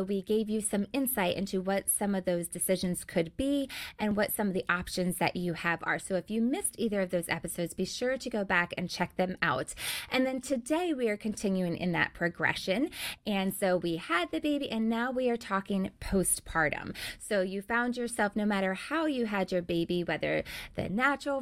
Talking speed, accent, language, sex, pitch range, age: 210 wpm, American, English, female, 180-235 Hz, 20-39